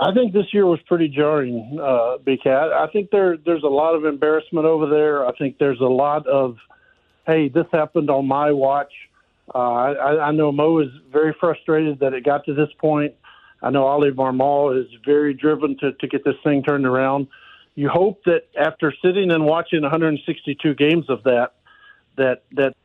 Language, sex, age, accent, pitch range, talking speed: English, male, 50-69, American, 140-175 Hz, 190 wpm